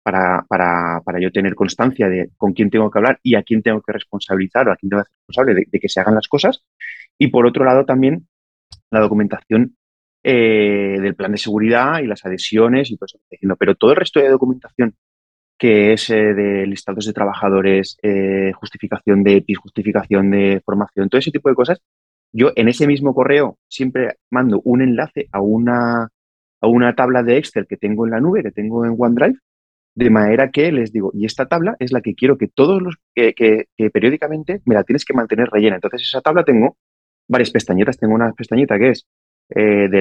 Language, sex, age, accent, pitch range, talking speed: Spanish, male, 30-49, Spanish, 100-125 Hz, 205 wpm